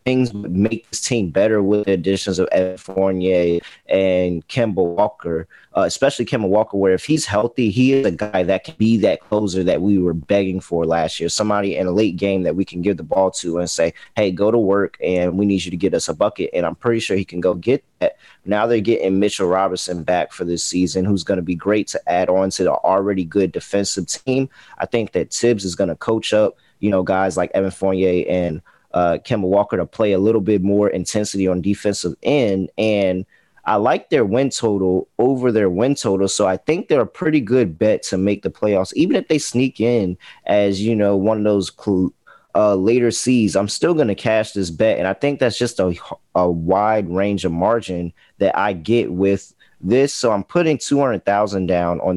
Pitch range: 90-110 Hz